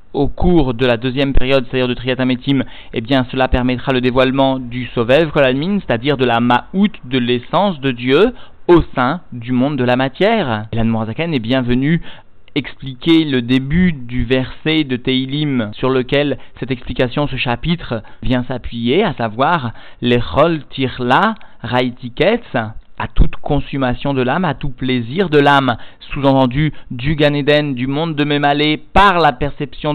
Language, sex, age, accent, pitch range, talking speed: French, male, 40-59, French, 125-150 Hz, 160 wpm